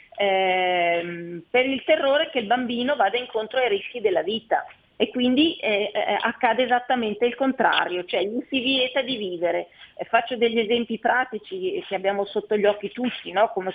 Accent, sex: native, female